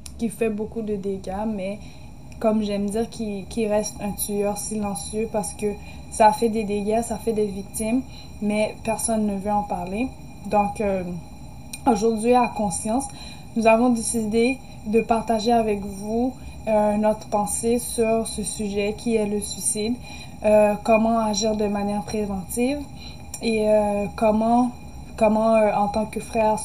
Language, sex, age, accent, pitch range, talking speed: French, female, 20-39, Canadian, 205-225 Hz, 155 wpm